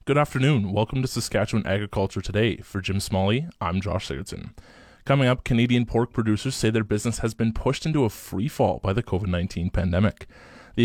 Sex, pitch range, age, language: male, 95-120 Hz, 20-39, English